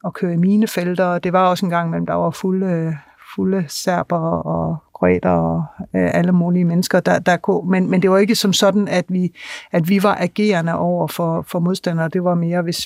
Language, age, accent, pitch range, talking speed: Danish, 60-79, native, 165-195 Hz, 215 wpm